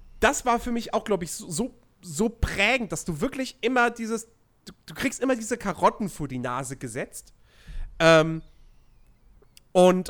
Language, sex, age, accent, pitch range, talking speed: German, male, 40-59, German, 160-230 Hz, 165 wpm